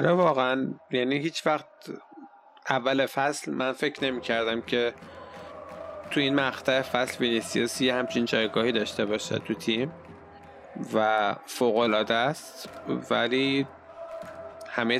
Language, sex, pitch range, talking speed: Arabic, male, 115-140 Hz, 110 wpm